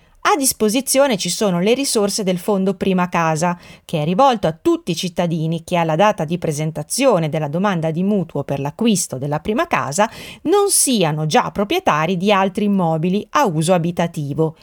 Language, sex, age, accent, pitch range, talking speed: Italian, female, 30-49, native, 165-220 Hz, 170 wpm